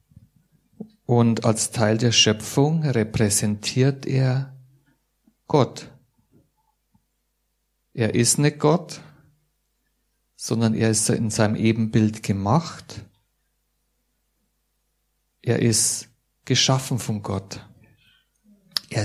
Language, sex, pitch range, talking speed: German, male, 110-145 Hz, 80 wpm